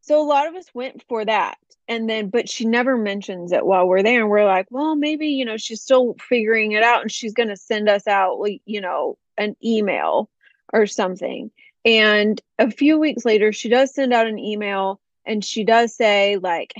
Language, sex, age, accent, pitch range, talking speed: English, female, 30-49, American, 205-255 Hz, 210 wpm